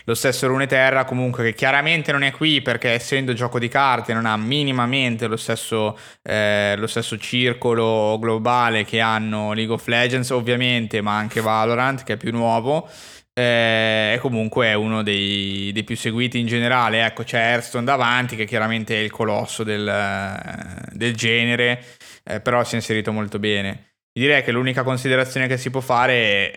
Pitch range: 105-125 Hz